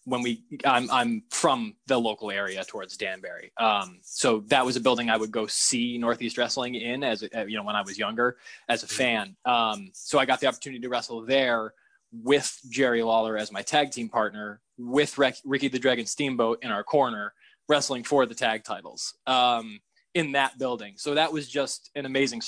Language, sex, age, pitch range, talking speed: English, male, 20-39, 115-140 Hz, 200 wpm